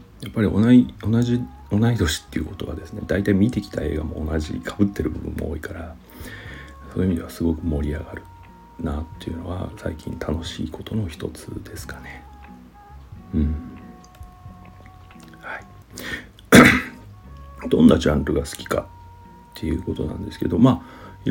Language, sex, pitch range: Japanese, male, 80-100 Hz